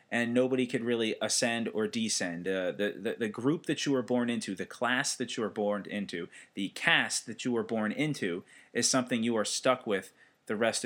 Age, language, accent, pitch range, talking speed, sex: 30-49, English, American, 105-135 Hz, 215 wpm, male